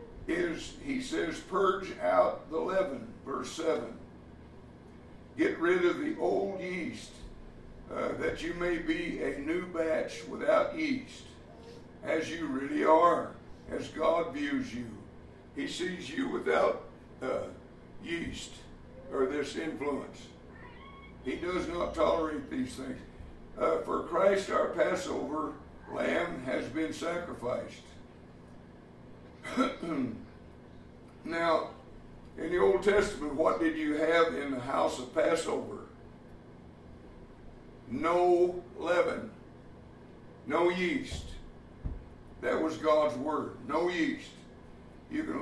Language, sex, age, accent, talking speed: English, male, 60-79, American, 110 wpm